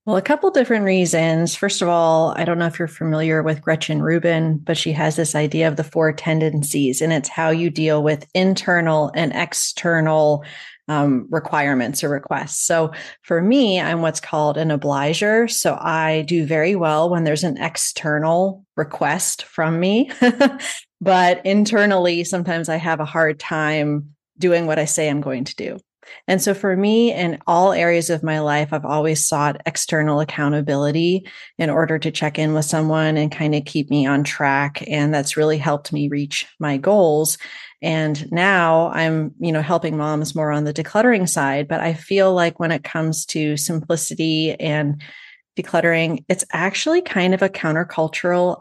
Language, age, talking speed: English, 30-49, 175 wpm